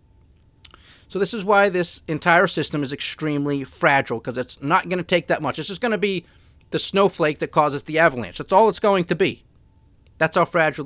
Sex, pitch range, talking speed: male, 125-165 Hz, 210 wpm